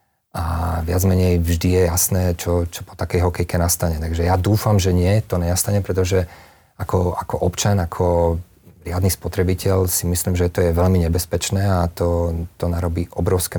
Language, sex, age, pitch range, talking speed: Slovak, male, 40-59, 85-95 Hz, 170 wpm